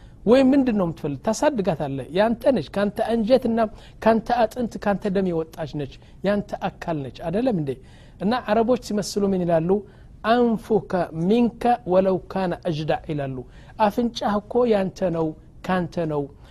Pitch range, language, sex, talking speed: 165-225 Hz, Amharic, male, 130 wpm